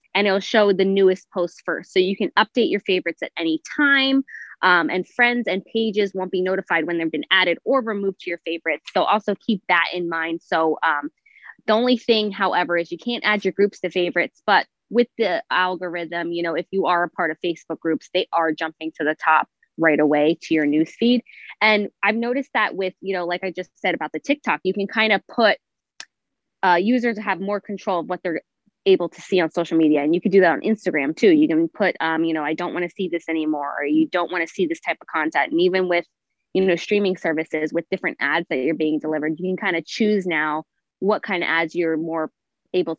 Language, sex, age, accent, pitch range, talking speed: English, female, 20-39, American, 165-205 Hz, 235 wpm